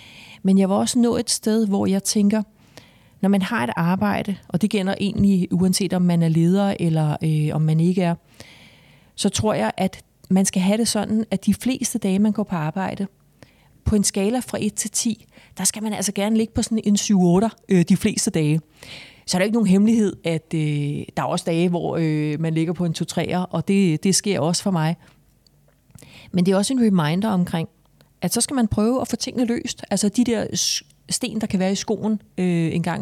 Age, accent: 30-49, native